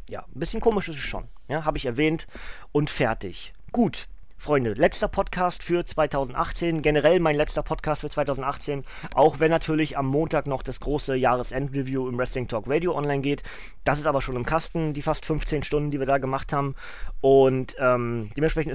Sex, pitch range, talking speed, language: male, 125-155 Hz, 185 wpm, German